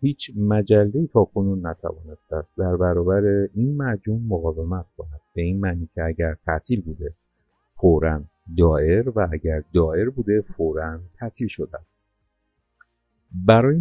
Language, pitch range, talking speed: Persian, 80-110 Hz, 130 wpm